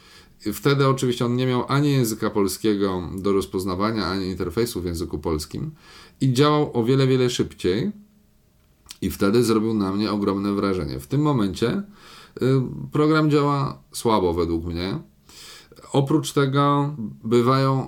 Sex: male